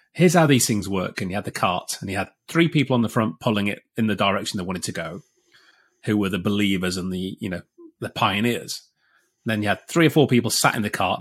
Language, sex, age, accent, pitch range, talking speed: English, male, 30-49, British, 100-140 Hz, 255 wpm